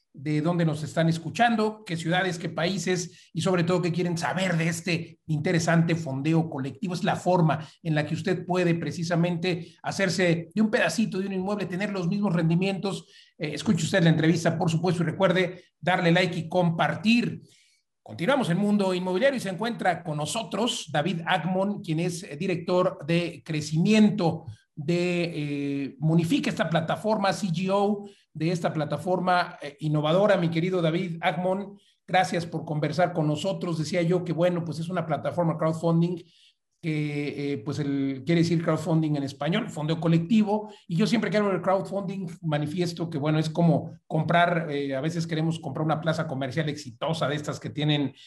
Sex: male